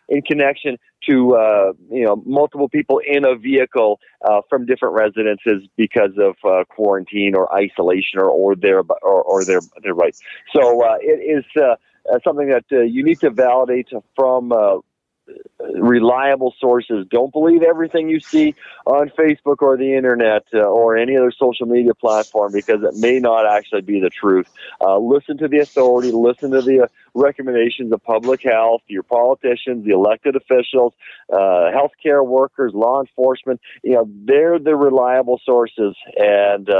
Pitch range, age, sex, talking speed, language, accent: 115-150 Hz, 40-59, male, 160 wpm, English, American